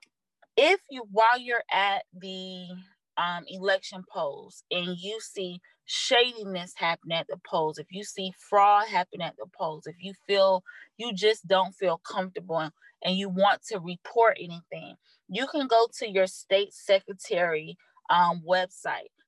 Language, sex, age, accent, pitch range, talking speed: English, female, 20-39, American, 180-225 Hz, 150 wpm